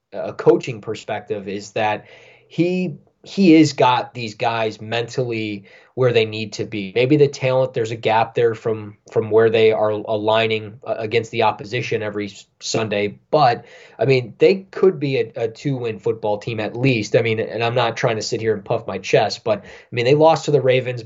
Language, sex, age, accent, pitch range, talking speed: English, male, 20-39, American, 110-135 Hz, 200 wpm